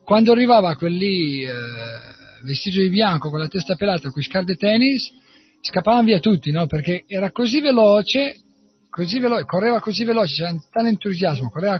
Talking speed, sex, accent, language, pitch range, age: 180 wpm, male, Italian, English, 155-230 Hz, 50-69